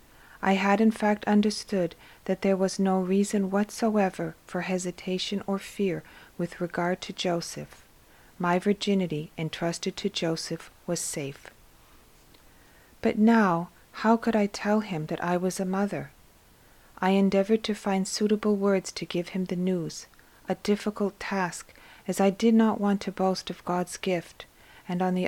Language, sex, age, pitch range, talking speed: English, female, 40-59, 175-205 Hz, 155 wpm